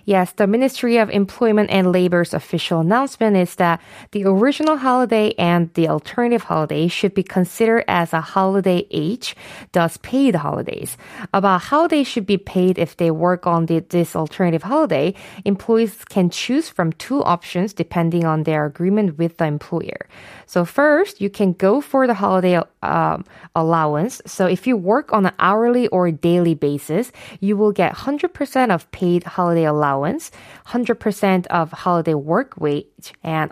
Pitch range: 165-220 Hz